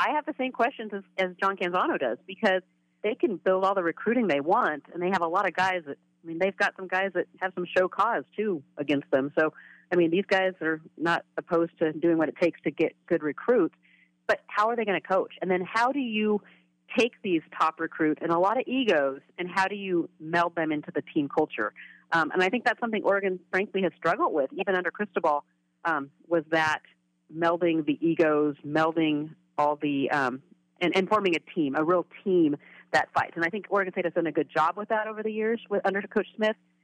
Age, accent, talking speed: 40-59, American, 230 wpm